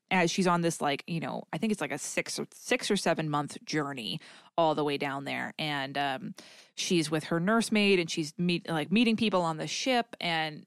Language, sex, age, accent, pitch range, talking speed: English, female, 20-39, American, 155-185 Hz, 225 wpm